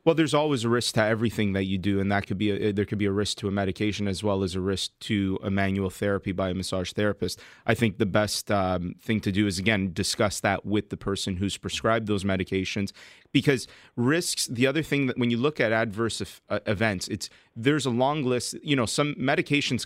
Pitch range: 100-120 Hz